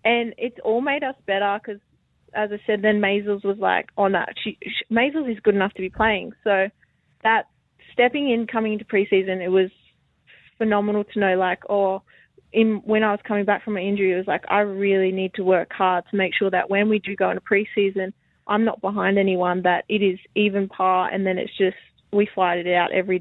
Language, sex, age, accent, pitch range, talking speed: English, female, 20-39, Australian, 190-215 Hz, 220 wpm